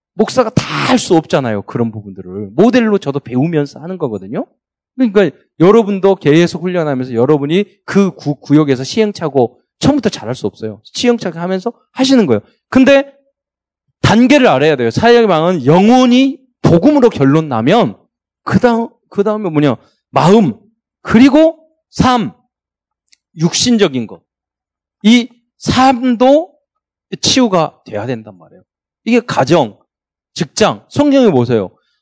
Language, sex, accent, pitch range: Korean, male, native, 145-240 Hz